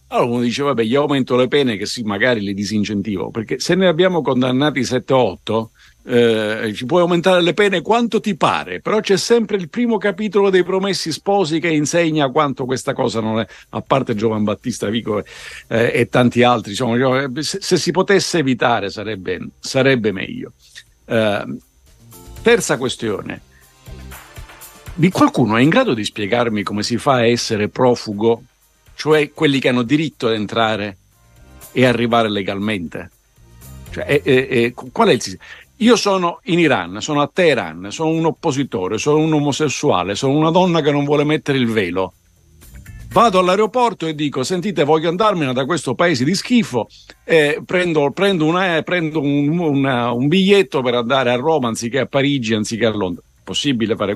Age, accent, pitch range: 50-69, native, 115-170 Hz